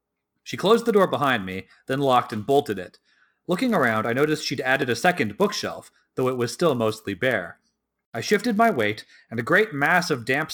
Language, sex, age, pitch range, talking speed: English, male, 40-59, 115-185 Hz, 205 wpm